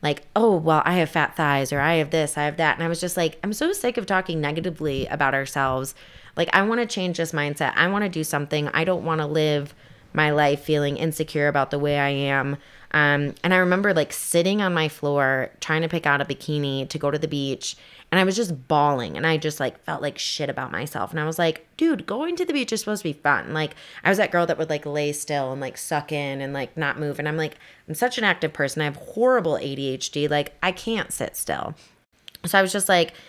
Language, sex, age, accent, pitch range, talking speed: English, female, 20-39, American, 140-175 Hz, 255 wpm